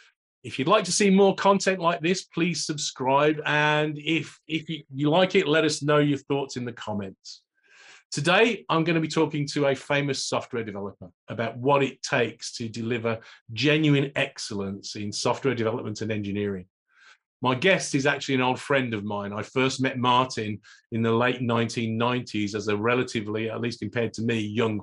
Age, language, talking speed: 40-59, English, 180 wpm